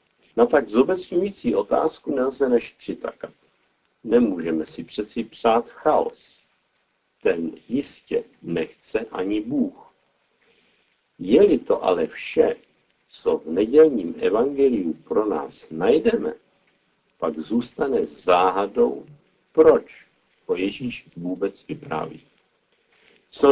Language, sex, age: Czech, male, 50-69